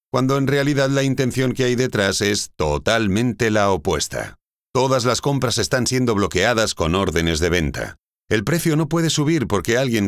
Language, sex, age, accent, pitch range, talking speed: Spanish, male, 50-69, Spanish, 90-125 Hz, 175 wpm